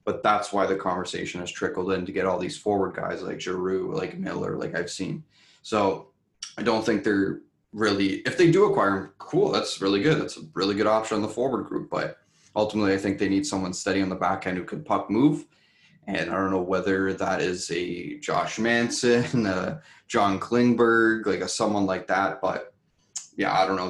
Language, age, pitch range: English, 20-39, 95-115 Hz